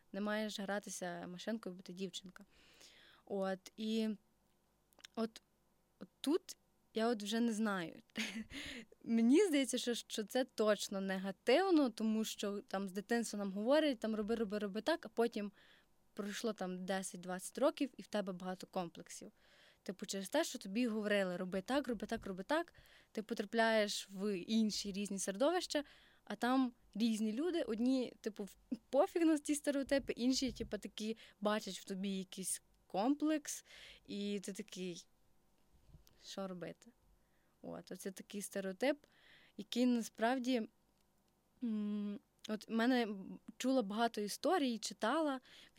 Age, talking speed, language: 20-39, 130 wpm, Ukrainian